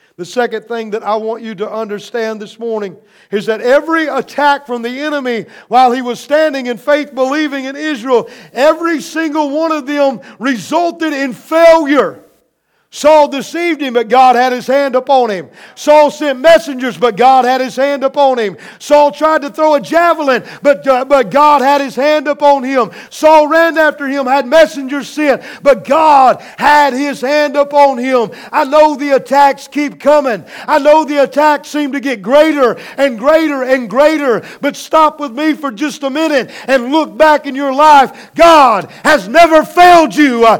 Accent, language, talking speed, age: American, English, 180 wpm, 50-69